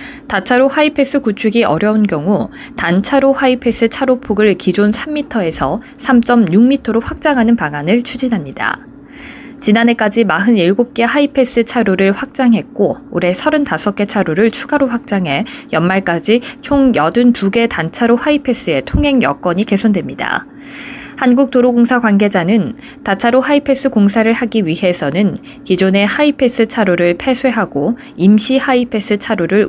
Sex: female